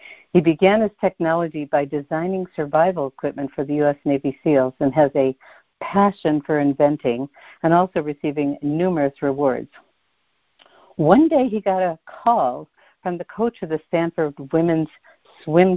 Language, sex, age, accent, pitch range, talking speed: English, female, 60-79, American, 145-180 Hz, 145 wpm